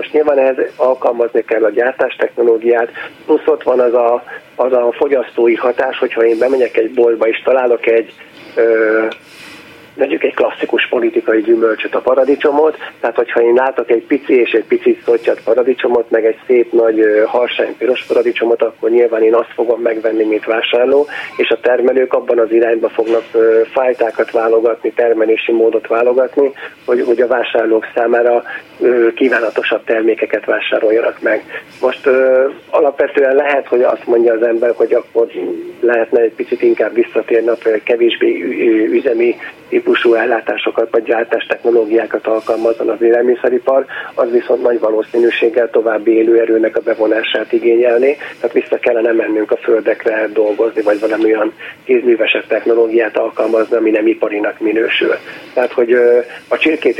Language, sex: Hungarian, male